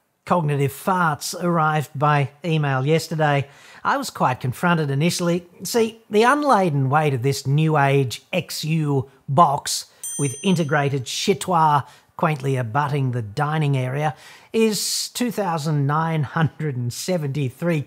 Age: 50-69